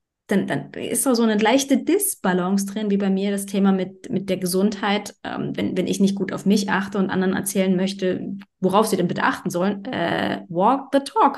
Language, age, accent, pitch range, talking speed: German, 20-39, German, 185-215 Hz, 215 wpm